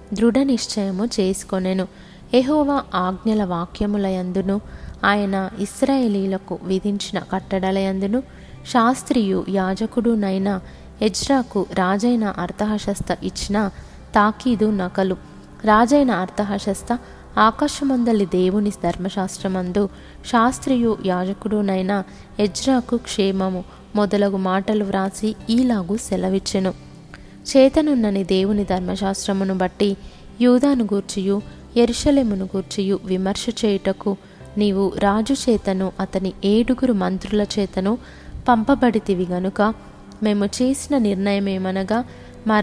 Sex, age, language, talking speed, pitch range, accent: female, 20-39, Telugu, 75 wpm, 190-230 Hz, native